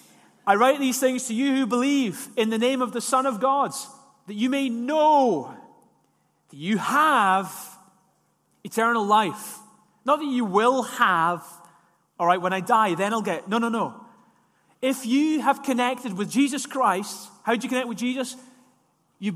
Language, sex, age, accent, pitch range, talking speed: English, male, 30-49, British, 210-270 Hz, 170 wpm